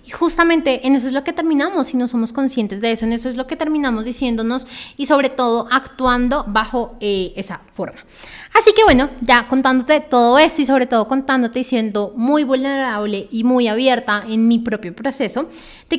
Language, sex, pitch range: Spanish, female, 235-285 Hz